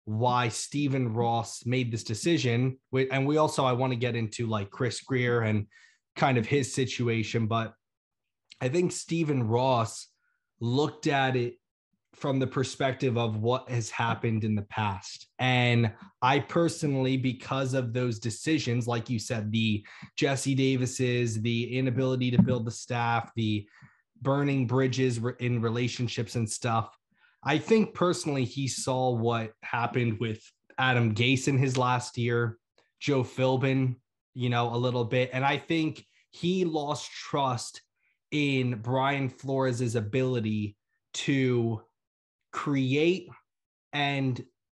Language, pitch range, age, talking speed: English, 115-135 Hz, 20-39, 135 wpm